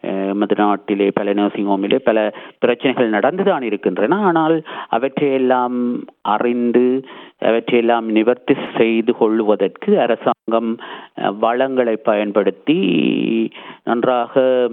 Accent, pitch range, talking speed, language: native, 115-140 Hz, 80 wpm, Tamil